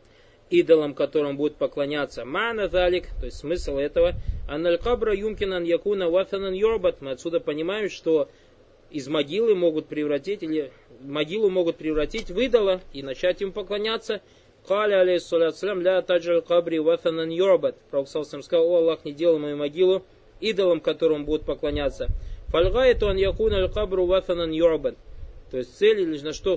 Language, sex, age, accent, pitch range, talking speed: Russian, male, 20-39, native, 160-210 Hz, 140 wpm